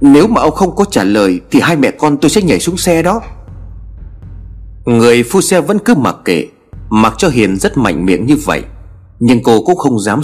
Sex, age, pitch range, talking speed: male, 30-49, 90-145 Hz, 215 wpm